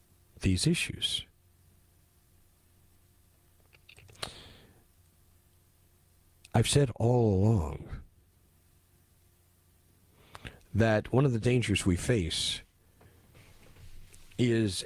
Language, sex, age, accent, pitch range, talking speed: English, male, 50-69, American, 90-115 Hz, 55 wpm